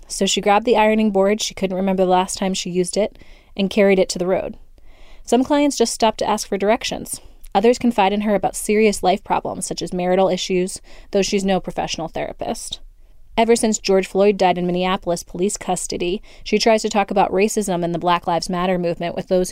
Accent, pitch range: American, 180-215 Hz